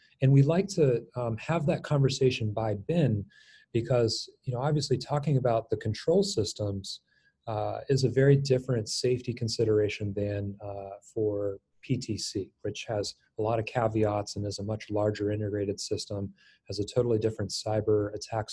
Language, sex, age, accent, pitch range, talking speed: English, male, 30-49, American, 105-120 Hz, 160 wpm